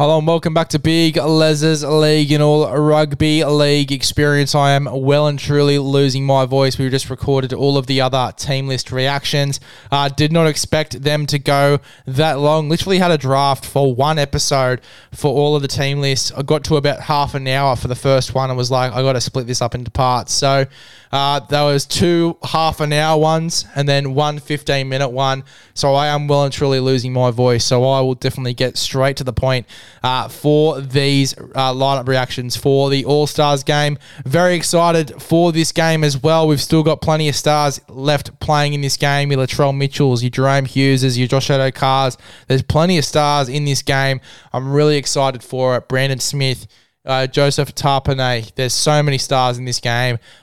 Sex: male